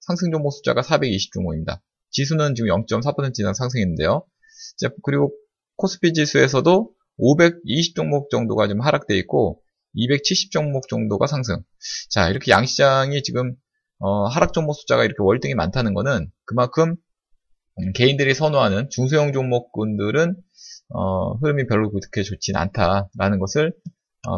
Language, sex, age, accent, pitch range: Korean, male, 20-39, native, 100-160 Hz